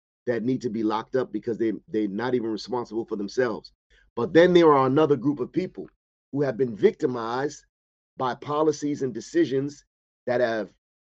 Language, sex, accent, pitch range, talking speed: English, male, American, 125-155 Hz, 170 wpm